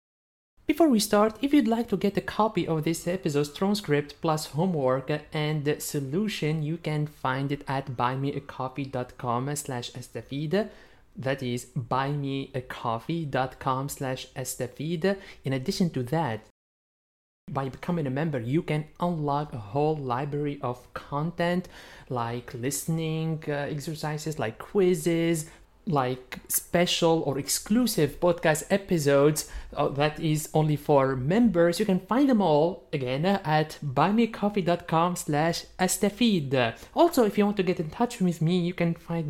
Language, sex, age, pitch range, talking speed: English, male, 30-49, 140-180 Hz, 130 wpm